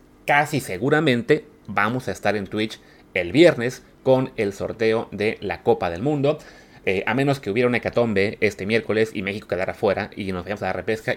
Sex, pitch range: male, 95-130 Hz